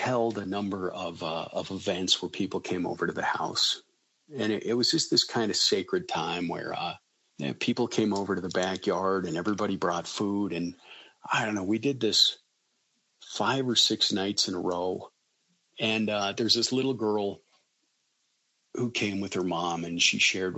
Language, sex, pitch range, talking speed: English, male, 95-115 Hz, 185 wpm